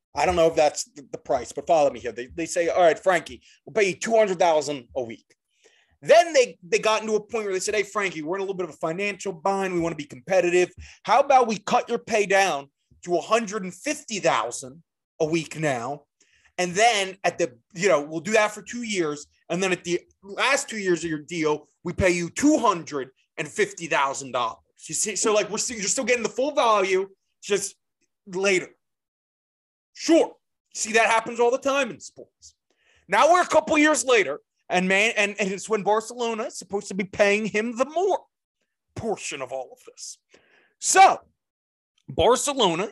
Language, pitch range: English, 175-230 Hz